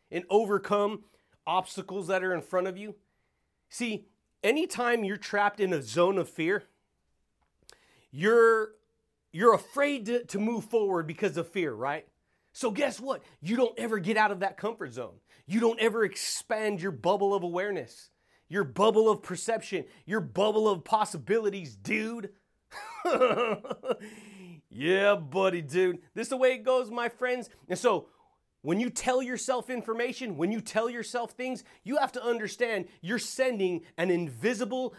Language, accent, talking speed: English, American, 155 wpm